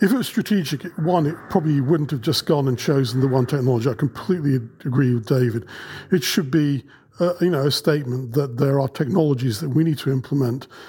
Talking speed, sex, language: 210 wpm, male, English